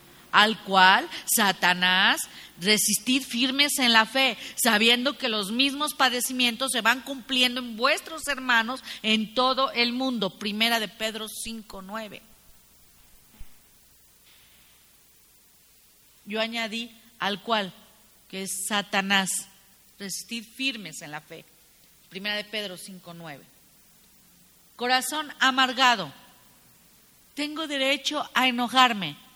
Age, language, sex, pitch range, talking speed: 40-59, English, female, 195-260 Hz, 105 wpm